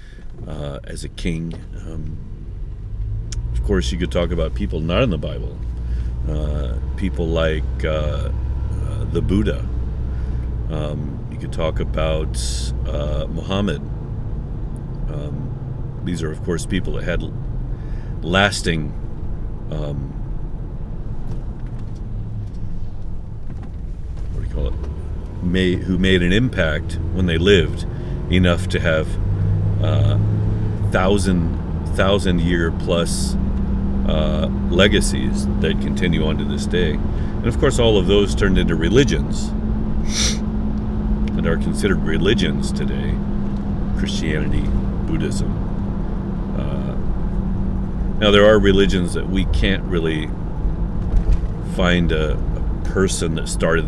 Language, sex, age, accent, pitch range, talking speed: English, male, 50-69, American, 75-100 Hz, 105 wpm